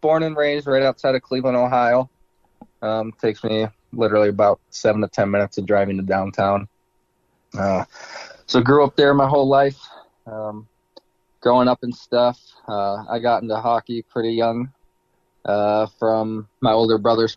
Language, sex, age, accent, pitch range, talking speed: English, male, 20-39, American, 105-130 Hz, 160 wpm